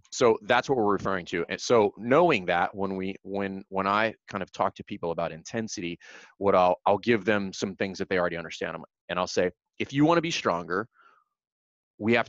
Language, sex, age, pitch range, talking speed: English, male, 30-49, 90-115 Hz, 215 wpm